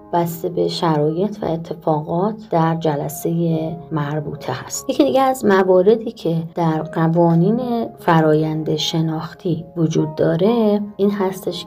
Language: Persian